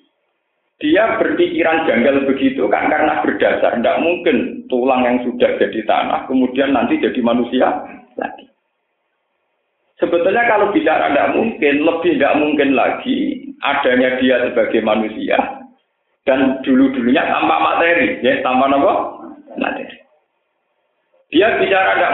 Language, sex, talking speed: Indonesian, male, 115 wpm